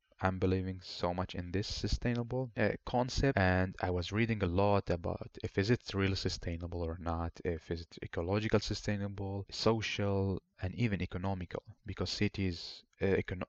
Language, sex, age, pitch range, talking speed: English, male, 30-49, 90-105 Hz, 160 wpm